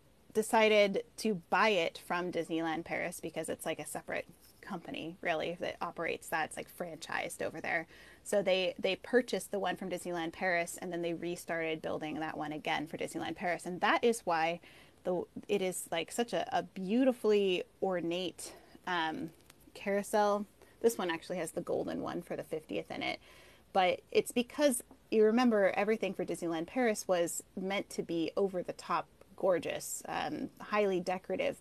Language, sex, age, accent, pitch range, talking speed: English, female, 20-39, American, 170-210 Hz, 165 wpm